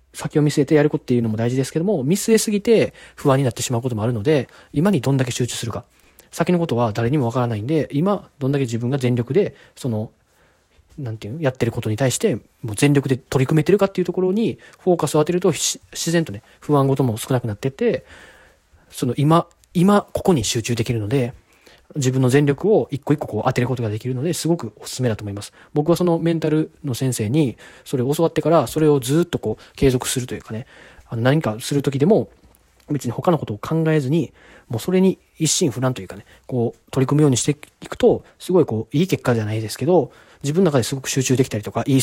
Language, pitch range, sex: Japanese, 120-160 Hz, male